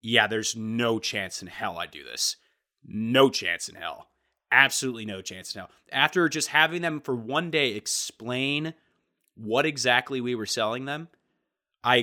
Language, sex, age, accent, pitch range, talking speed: English, male, 30-49, American, 125-195 Hz, 165 wpm